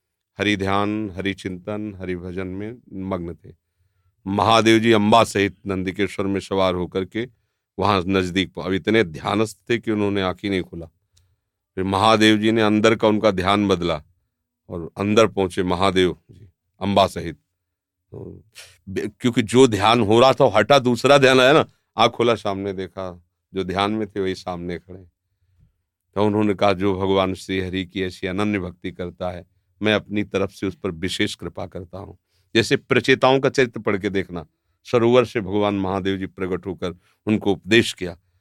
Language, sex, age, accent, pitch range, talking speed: Hindi, male, 40-59, native, 95-110 Hz, 170 wpm